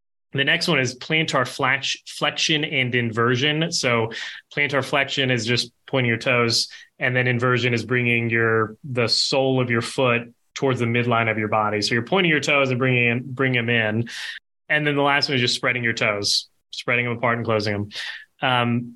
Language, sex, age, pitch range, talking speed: English, male, 20-39, 120-145 Hz, 185 wpm